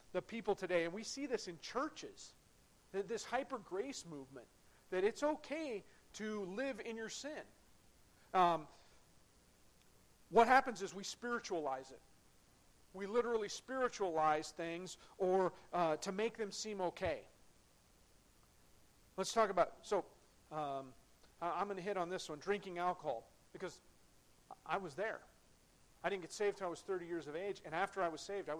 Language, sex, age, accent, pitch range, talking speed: English, male, 40-59, American, 170-225 Hz, 160 wpm